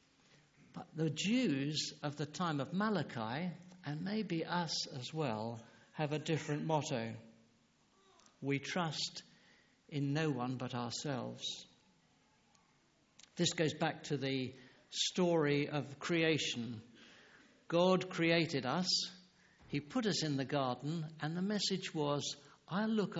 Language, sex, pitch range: English, male, 130-165 Hz